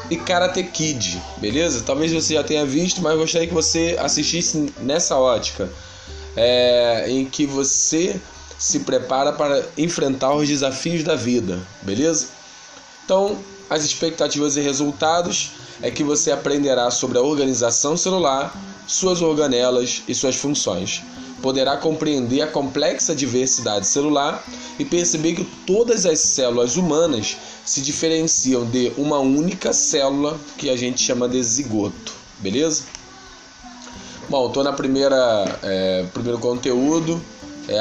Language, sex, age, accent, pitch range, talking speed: Portuguese, male, 20-39, Brazilian, 125-160 Hz, 125 wpm